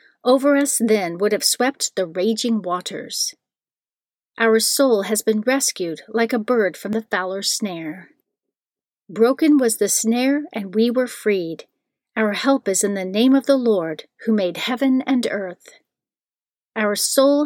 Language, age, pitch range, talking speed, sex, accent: English, 40-59, 195-250 Hz, 155 wpm, female, American